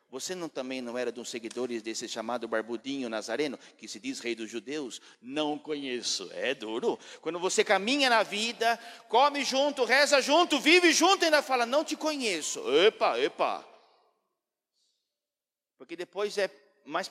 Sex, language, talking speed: male, Portuguese, 155 wpm